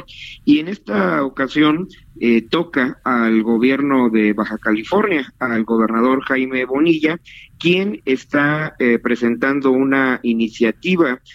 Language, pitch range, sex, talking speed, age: Spanish, 120-145 Hz, male, 110 wpm, 50-69